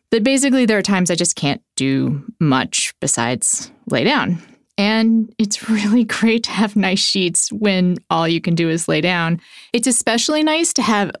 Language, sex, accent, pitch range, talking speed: English, female, American, 180-255 Hz, 180 wpm